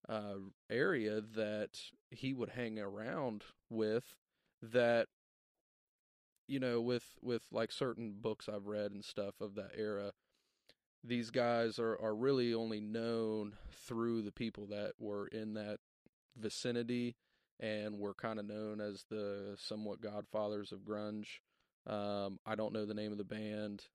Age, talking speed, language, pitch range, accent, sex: 20-39, 145 wpm, English, 105-115 Hz, American, male